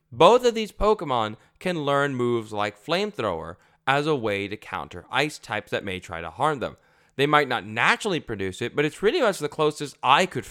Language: English